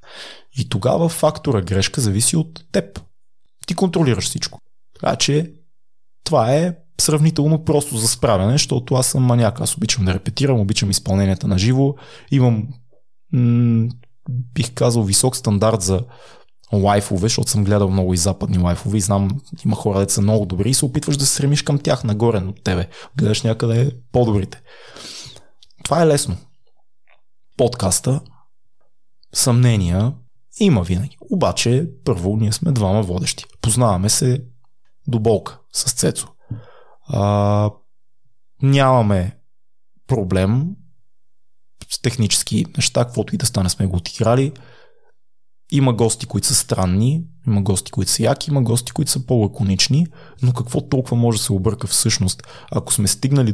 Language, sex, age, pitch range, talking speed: Bulgarian, male, 20-39, 105-140 Hz, 140 wpm